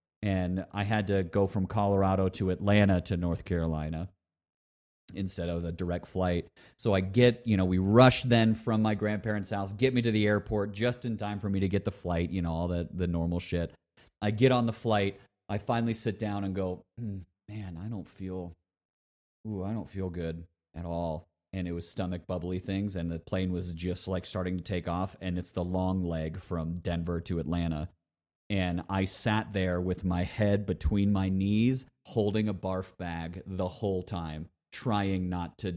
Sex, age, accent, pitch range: male, 30-49, American, 90-105 Hz